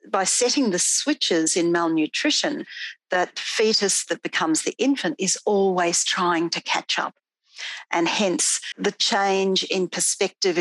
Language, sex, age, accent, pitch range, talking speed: English, female, 50-69, Australian, 170-210 Hz, 135 wpm